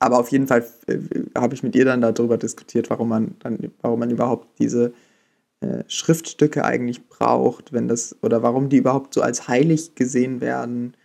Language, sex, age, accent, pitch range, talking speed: German, male, 20-39, German, 120-135 Hz, 185 wpm